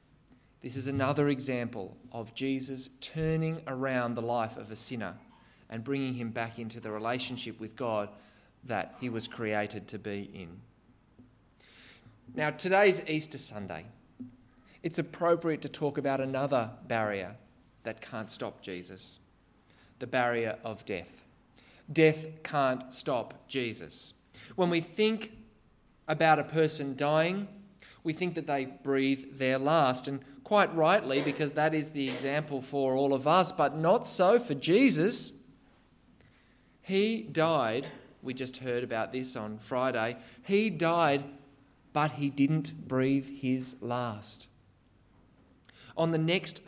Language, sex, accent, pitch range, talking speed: English, male, Australian, 120-155 Hz, 130 wpm